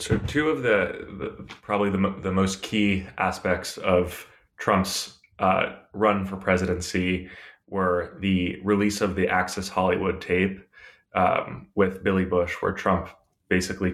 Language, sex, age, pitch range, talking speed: English, male, 20-39, 90-100 Hz, 140 wpm